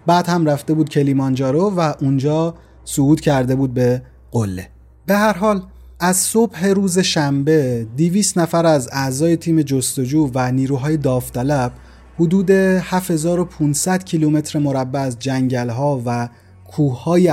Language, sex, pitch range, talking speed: Persian, male, 130-170 Hz, 125 wpm